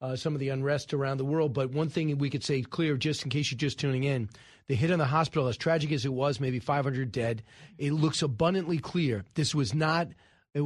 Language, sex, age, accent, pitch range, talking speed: English, male, 40-59, American, 135-160 Hz, 240 wpm